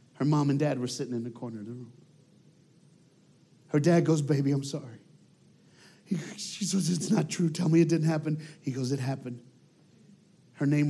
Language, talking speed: Swedish, 185 wpm